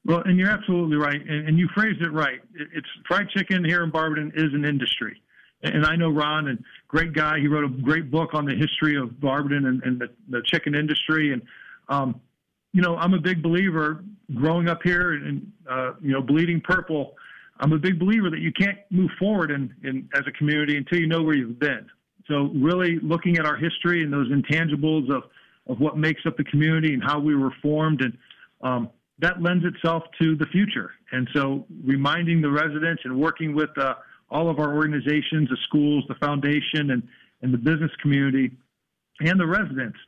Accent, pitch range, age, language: American, 140-170 Hz, 50-69, English